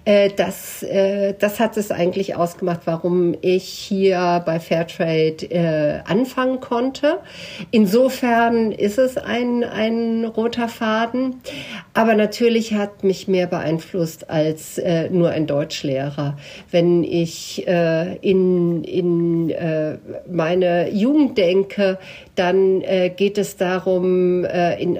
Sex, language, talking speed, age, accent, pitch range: female, German, 100 wpm, 50-69, German, 170-200 Hz